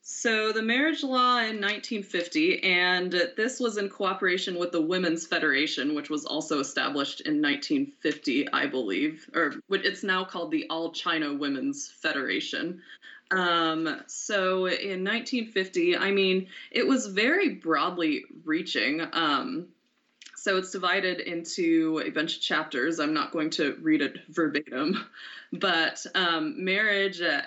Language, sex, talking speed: English, female, 135 wpm